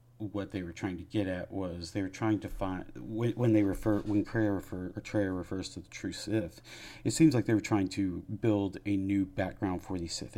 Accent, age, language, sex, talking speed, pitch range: American, 40-59, English, male, 225 wpm, 95-115 Hz